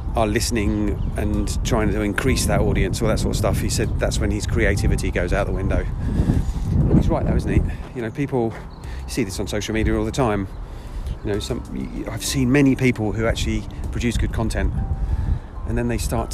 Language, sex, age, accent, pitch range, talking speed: English, male, 40-59, British, 90-115 Hz, 200 wpm